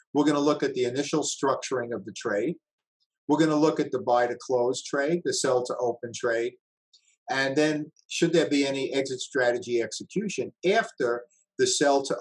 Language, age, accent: English, 50-69, American